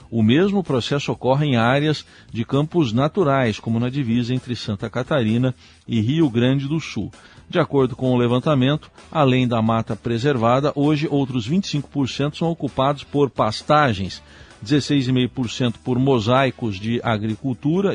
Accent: Brazilian